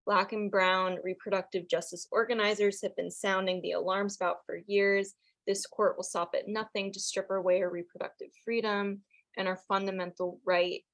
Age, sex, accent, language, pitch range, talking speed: 20-39, female, American, English, 185-215 Hz, 165 wpm